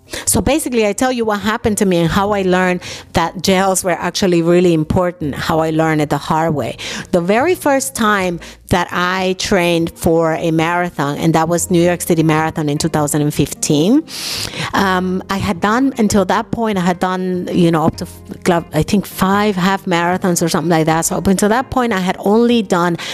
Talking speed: 200 wpm